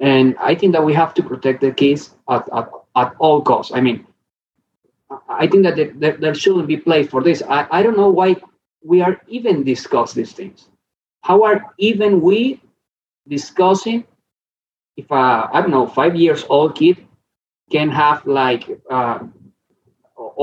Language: English